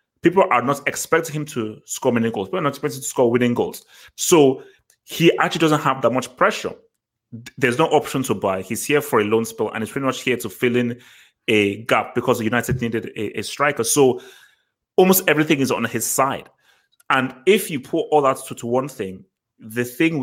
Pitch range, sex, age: 115-145 Hz, male, 30-49